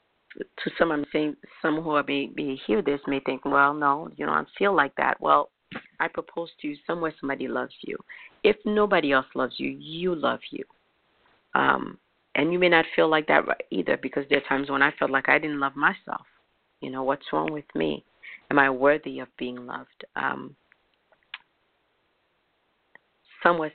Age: 40-59